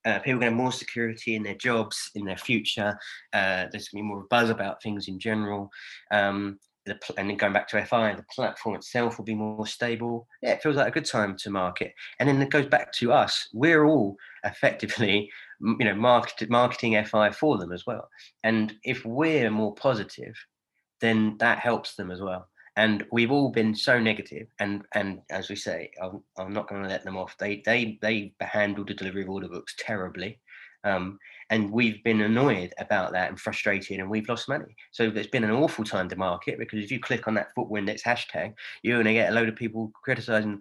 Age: 20-39